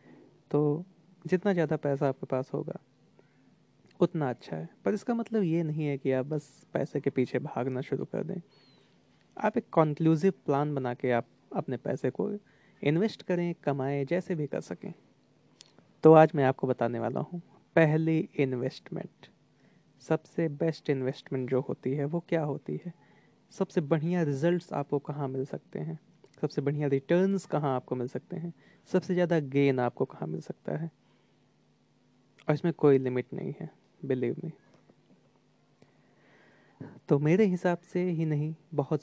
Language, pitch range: Hindi, 140-175 Hz